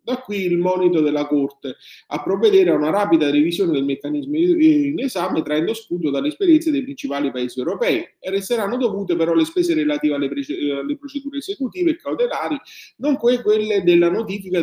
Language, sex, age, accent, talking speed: Italian, male, 30-49, native, 165 wpm